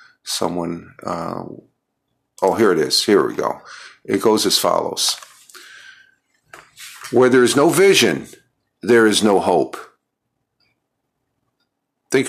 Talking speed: 110 wpm